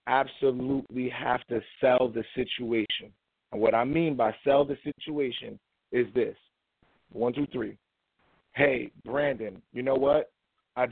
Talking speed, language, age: 135 wpm, English, 30-49